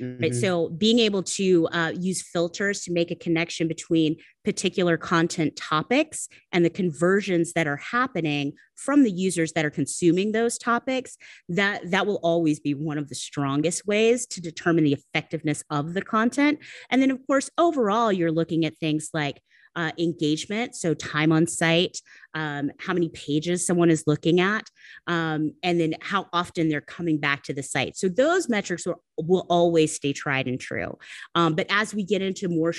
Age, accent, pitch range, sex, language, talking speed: 30-49, American, 155-195 Hz, female, English, 180 wpm